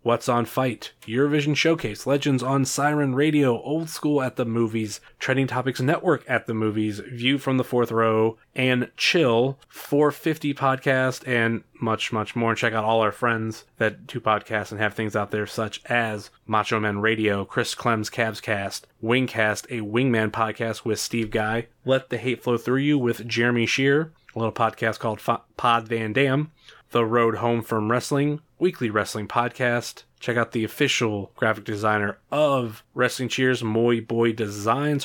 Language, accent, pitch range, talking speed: English, American, 110-130 Hz, 170 wpm